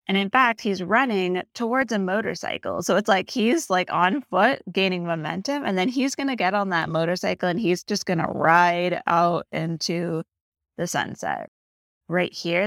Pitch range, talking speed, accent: 165-215 Hz, 180 wpm, American